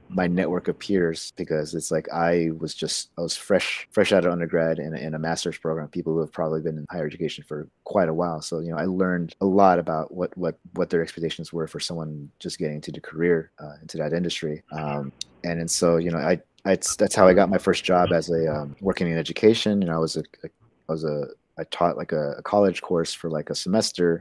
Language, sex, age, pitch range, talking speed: English, male, 30-49, 80-90 Hz, 245 wpm